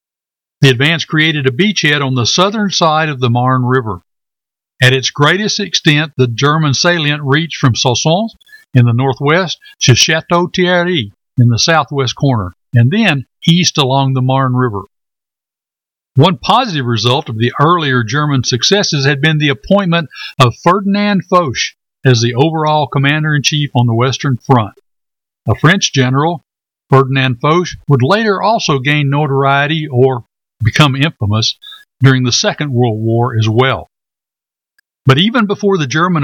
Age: 60-79